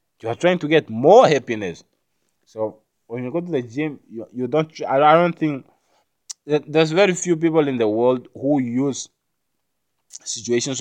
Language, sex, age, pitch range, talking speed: English, male, 20-39, 110-140 Hz, 165 wpm